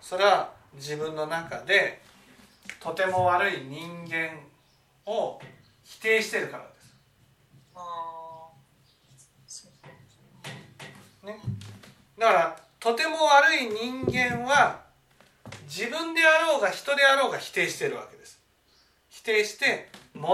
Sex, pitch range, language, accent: male, 150-250 Hz, Japanese, native